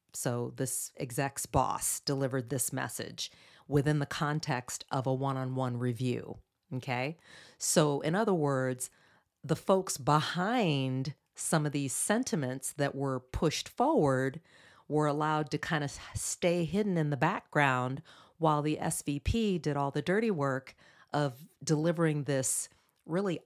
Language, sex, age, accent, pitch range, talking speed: English, female, 40-59, American, 135-165 Hz, 135 wpm